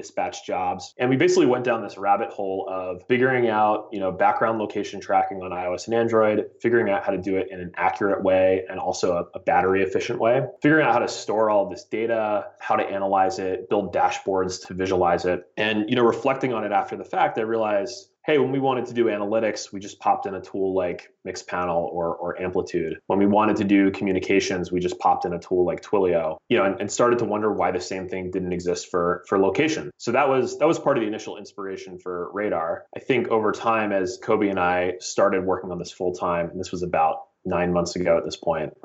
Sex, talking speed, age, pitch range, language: male, 235 wpm, 30-49, 90-105 Hz, English